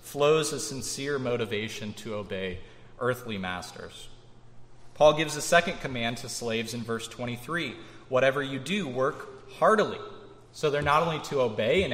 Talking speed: 150 wpm